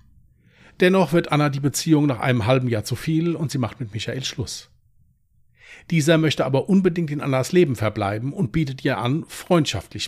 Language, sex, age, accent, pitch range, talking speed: German, male, 40-59, German, 110-155 Hz, 180 wpm